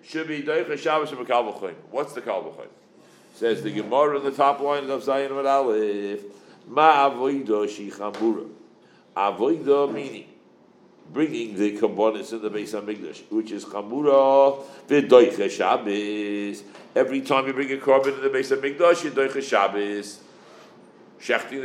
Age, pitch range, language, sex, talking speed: 60-79, 105-140 Hz, English, male, 140 wpm